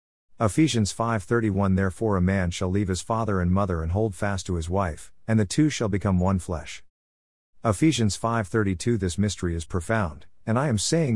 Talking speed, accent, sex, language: 185 wpm, American, male, English